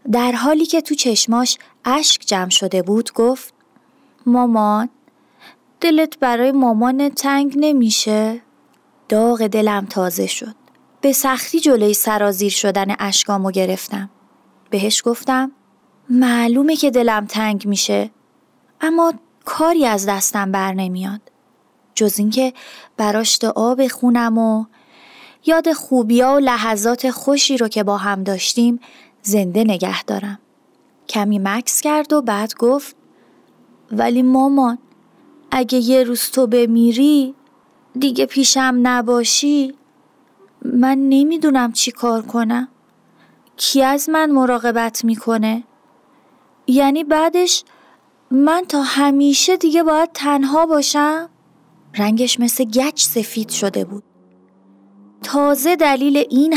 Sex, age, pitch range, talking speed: female, 30-49, 220-275 Hz, 110 wpm